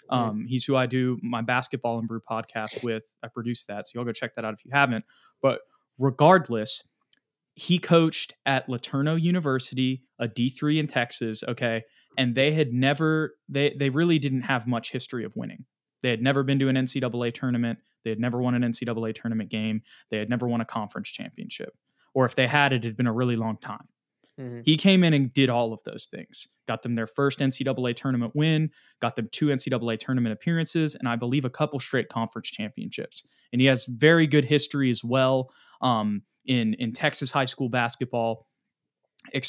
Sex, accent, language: male, American, English